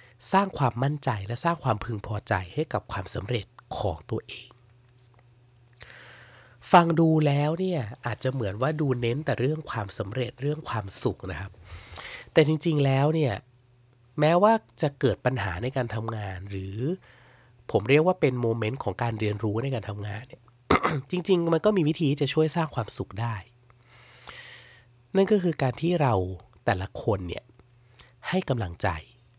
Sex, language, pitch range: male, English, 110-140 Hz